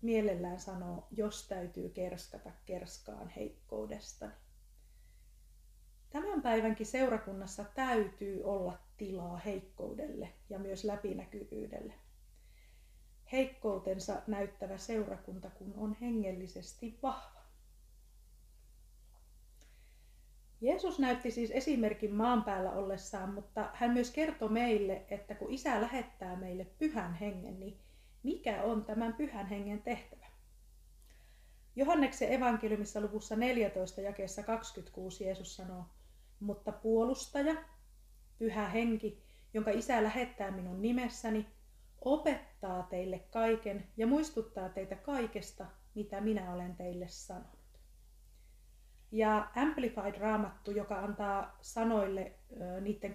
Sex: female